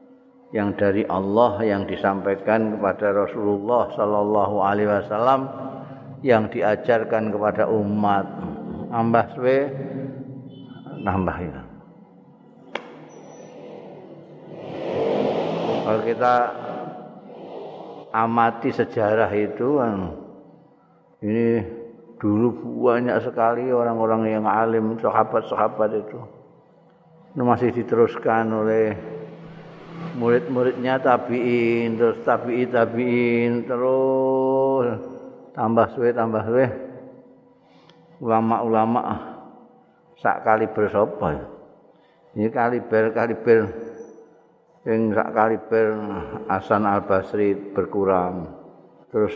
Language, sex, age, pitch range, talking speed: Indonesian, male, 50-69, 105-120 Hz, 70 wpm